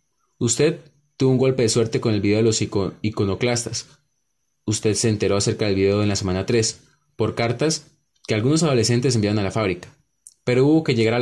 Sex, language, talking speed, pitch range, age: male, Spanish, 195 wpm, 105-130 Hz, 20-39